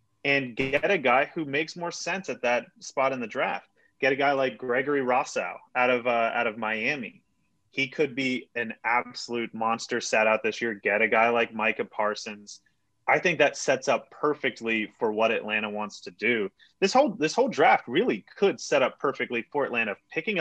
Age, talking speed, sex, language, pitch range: 30-49, 195 wpm, male, English, 115-155 Hz